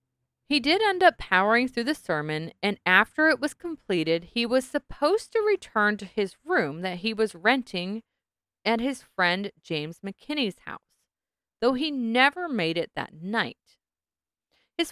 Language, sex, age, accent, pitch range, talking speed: English, female, 30-49, American, 190-295 Hz, 155 wpm